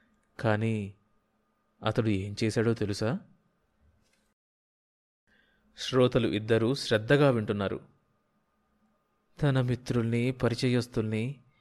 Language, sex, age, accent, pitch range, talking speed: Telugu, male, 20-39, native, 110-140 Hz, 55 wpm